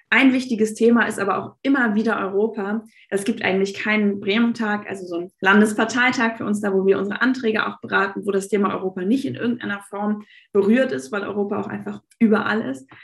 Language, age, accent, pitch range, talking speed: German, 20-39, German, 195-230 Hz, 200 wpm